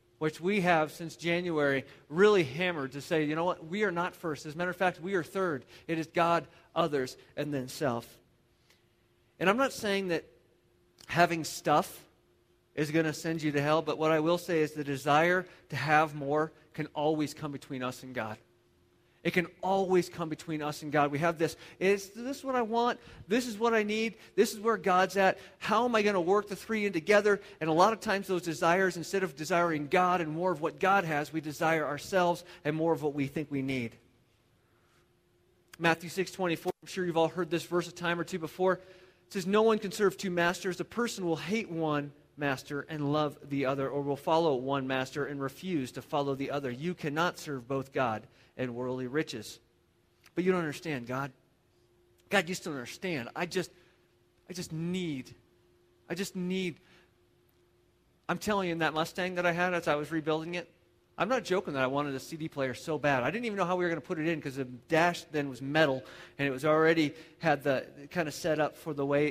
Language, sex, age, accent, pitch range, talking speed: English, male, 40-59, American, 140-180 Hz, 220 wpm